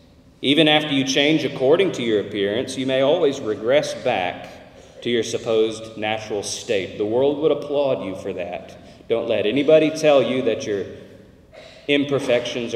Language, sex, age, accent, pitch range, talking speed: English, male, 40-59, American, 130-170 Hz, 155 wpm